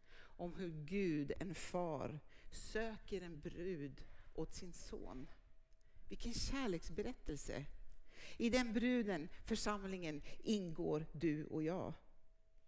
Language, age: Swedish, 60-79